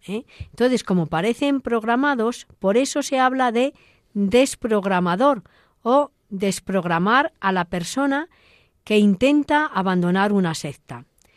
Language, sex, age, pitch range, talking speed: Spanish, female, 40-59, 185-255 Hz, 105 wpm